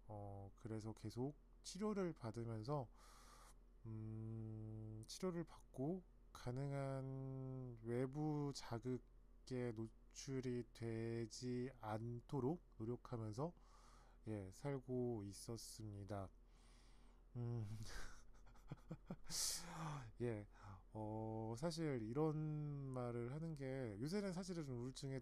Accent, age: native, 20-39